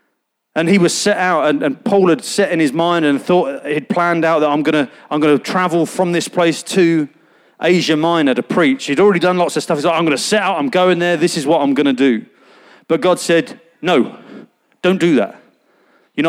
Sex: male